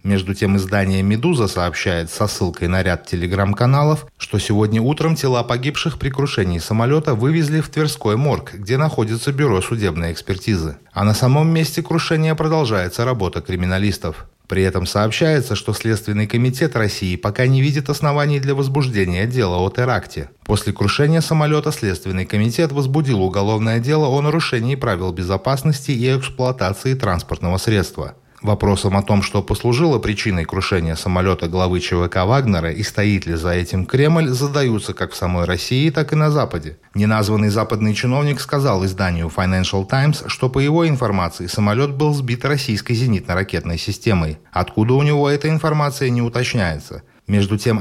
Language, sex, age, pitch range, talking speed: Russian, male, 30-49, 95-140 Hz, 150 wpm